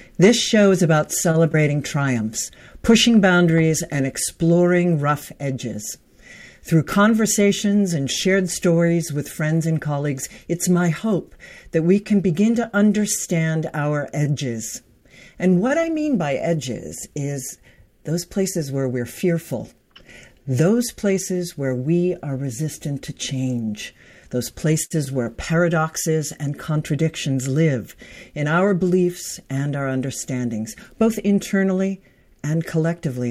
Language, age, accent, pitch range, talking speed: English, 50-69, American, 135-185 Hz, 125 wpm